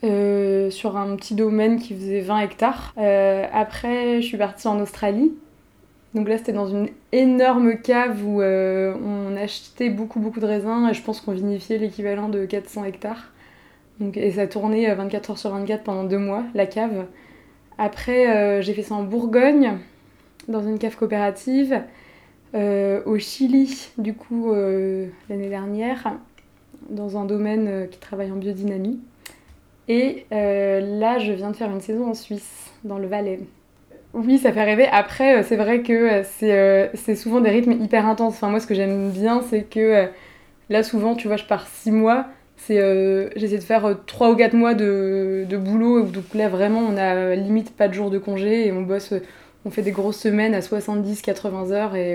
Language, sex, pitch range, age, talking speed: French, female, 200-225 Hz, 20-39, 185 wpm